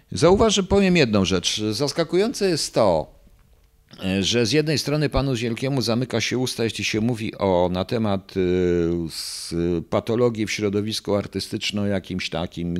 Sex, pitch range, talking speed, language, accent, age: male, 90-115 Hz, 140 wpm, Polish, native, 50-69